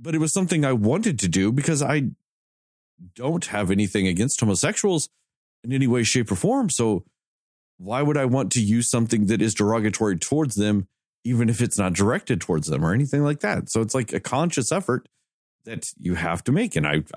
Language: English